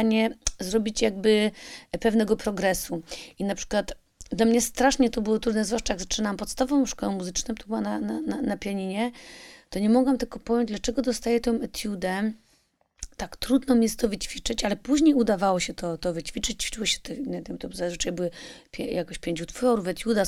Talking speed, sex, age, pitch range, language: 180 wpm, female, 30-49, 210-260 Hz, Polish